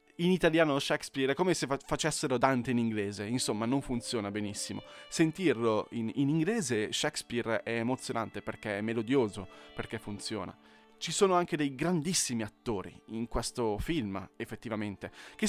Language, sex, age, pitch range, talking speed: Italian, male, 20-39, 110-140 Hz, 145 wpm